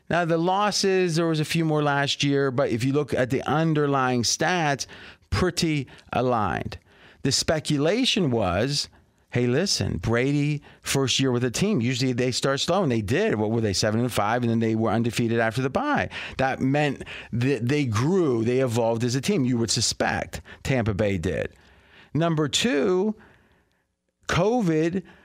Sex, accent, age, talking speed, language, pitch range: male, American, 40-59, 170 wpm, English, 125-175 Hz